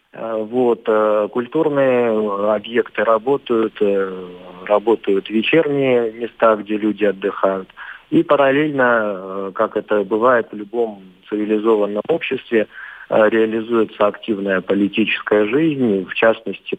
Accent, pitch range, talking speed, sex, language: native, 100-115 Hz, 90 wpm, male, Russian